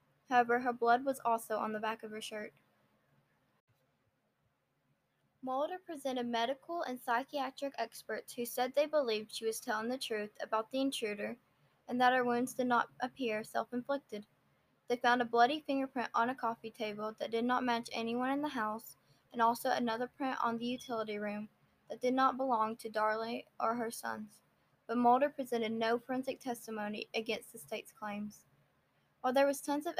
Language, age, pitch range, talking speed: English, 10-29, 220-255 Hz, 170 wpm